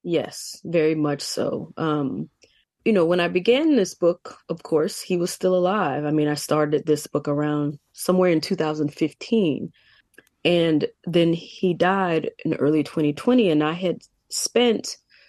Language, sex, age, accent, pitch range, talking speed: English, female, 20-39, American, 150-185 Hz, 155 wpm